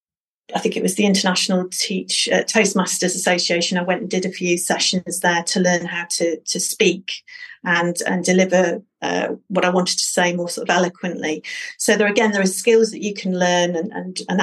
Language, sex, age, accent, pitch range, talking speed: English, female, 40-59, British, 180-210 Hz, 210 wpm